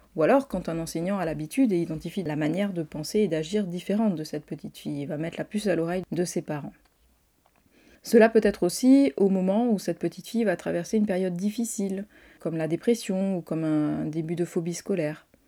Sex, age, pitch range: female, 30-49, 165-210 Hz